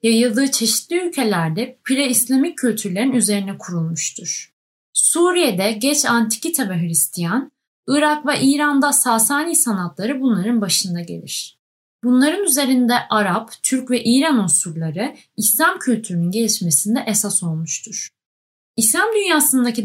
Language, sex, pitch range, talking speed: Turkish, female, 195-265 Hz, 105 wpm